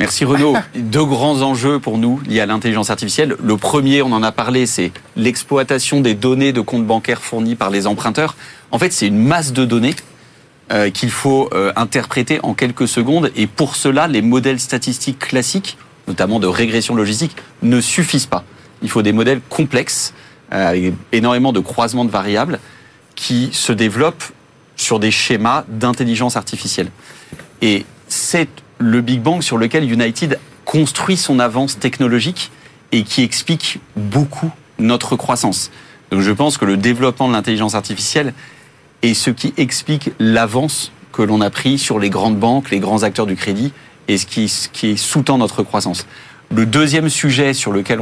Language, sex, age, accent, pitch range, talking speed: French, male, 30-49, French, 110-140 Hz, 165 wpm